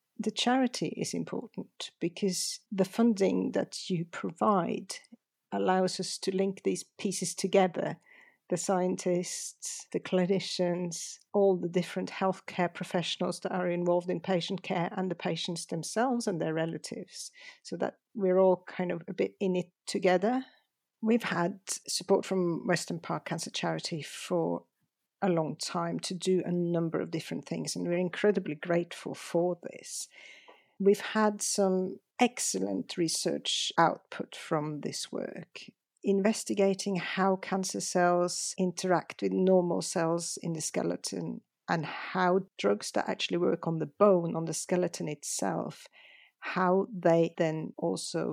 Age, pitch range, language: 50-69, 170-195 Hz, English